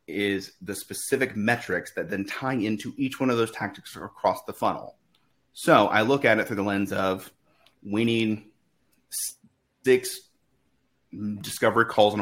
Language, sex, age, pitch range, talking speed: English, male, 30-49, 100-115 Hz, 150 wpm